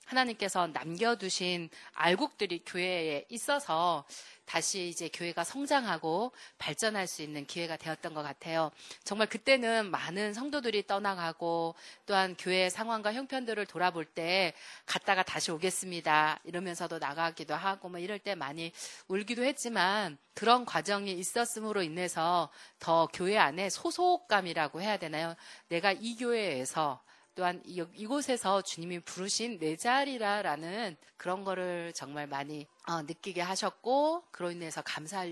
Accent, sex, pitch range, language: native, female, 165-230 Hz, Korean